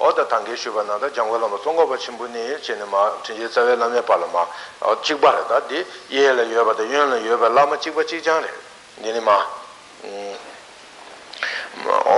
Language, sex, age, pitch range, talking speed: Italian, male, 60-79, 115-160 Hz, 70 wpm